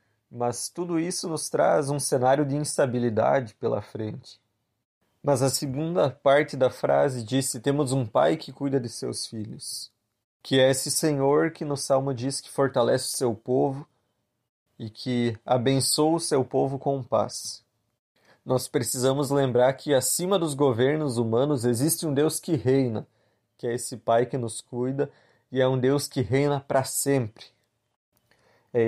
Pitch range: 120-145 Hz